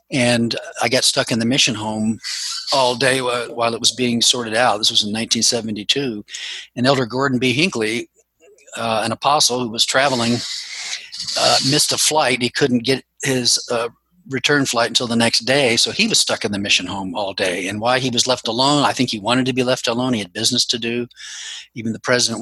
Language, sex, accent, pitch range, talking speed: English, male, American, 110-130 Hz, 210 wpm